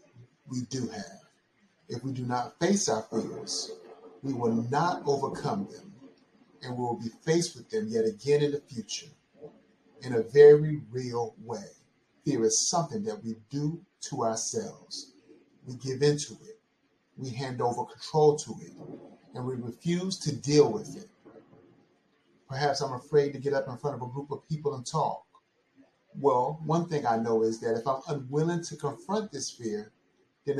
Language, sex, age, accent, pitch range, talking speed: English, male, 30-49, American, 125-170 Hz, 170 wpm